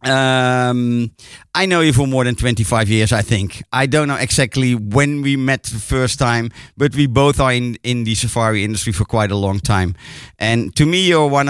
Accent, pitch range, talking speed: Dutch, 115-140 Hz, 210 wpm